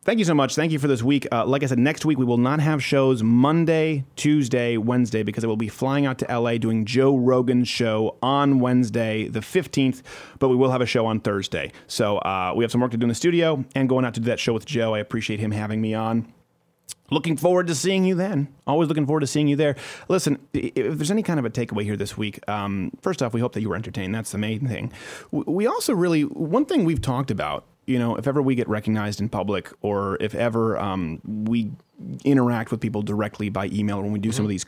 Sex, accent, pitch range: male, American, 110-140 Hz